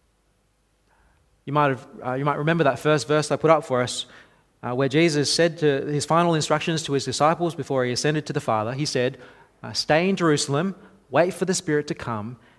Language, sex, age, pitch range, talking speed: English, male, 30-49, 115-160 Hz, 210 wpm